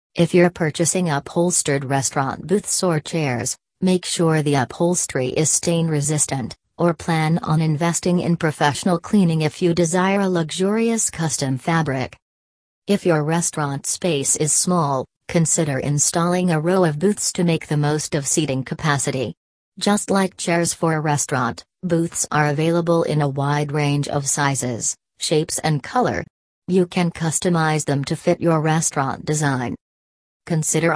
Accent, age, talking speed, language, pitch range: American, 40-59, 145 wpm, English, 145-175 Hz